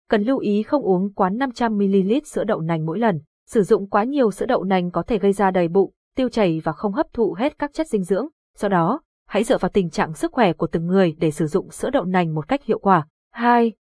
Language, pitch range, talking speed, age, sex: Vietnamese, 190-235 Hz, 255 wpm, 20-39, female